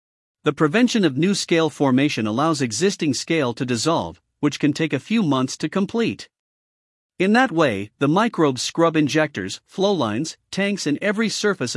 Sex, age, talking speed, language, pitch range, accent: male, 50-69, 165 wpm, English, 130-195 Hz, American